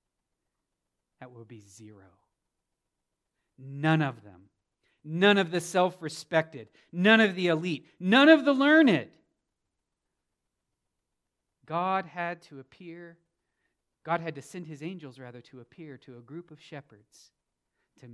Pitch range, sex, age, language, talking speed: 120-180 Hz, male, 40-59, English, 125 wpm